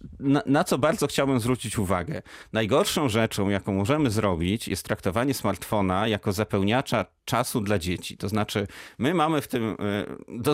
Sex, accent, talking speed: male, native, 150 wpm